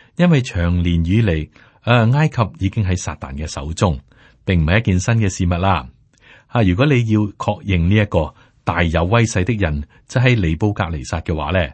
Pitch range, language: 85-115 Hz, Chinese